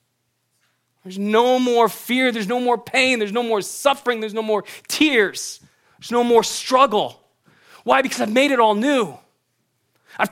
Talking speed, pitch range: 165 wpm, 150-225 Hz